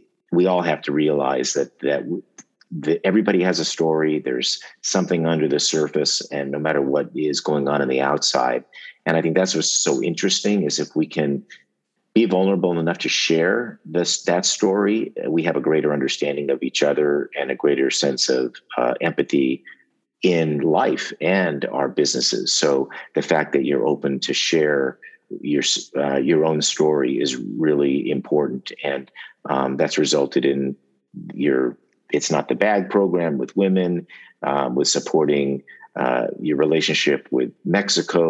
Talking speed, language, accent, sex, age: 160 wpm, English, American, male, 50-69